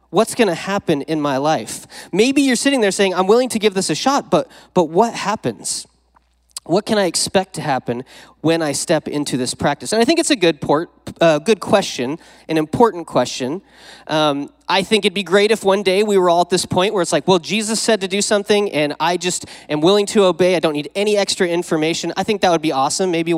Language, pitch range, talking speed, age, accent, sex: English, 150-190 Hz, 235 wpm, 30-49, American, male